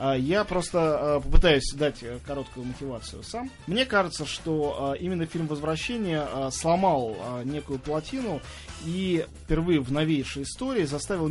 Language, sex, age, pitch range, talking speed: Russian, male, 20-39, 140-185 Hz, 115 wpm